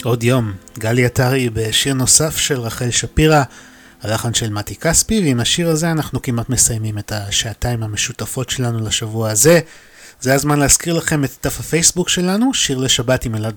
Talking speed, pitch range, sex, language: 165 wpm, 115-150 Hz, male, Hebrew